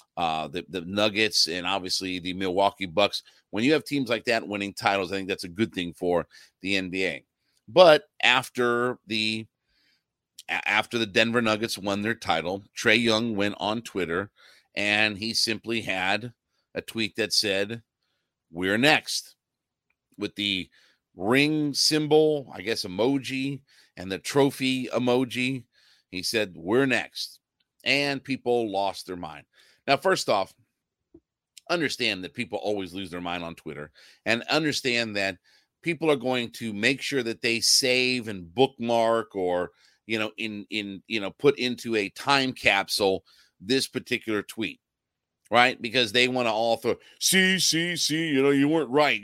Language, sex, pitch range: English, male, 95-125 Hz